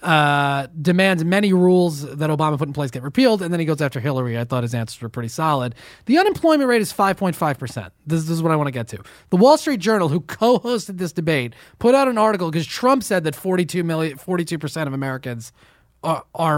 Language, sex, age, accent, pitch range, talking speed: English, male, 30-49, American, 145-210 Hz, 215 wpm